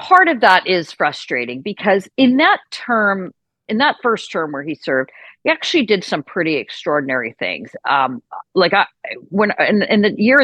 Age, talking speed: 40-59, 180 wpm